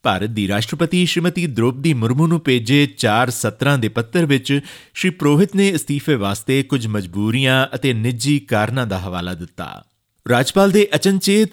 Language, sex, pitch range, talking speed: Punjabi, male, 110-150 Hz, 145 wpm